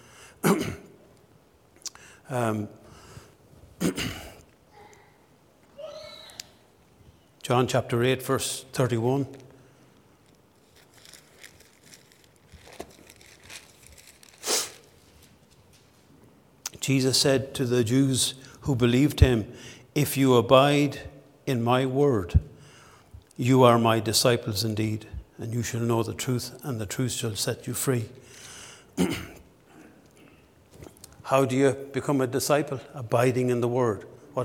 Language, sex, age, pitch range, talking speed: English, male, 60-79, 120-140 Hz, 85 wpm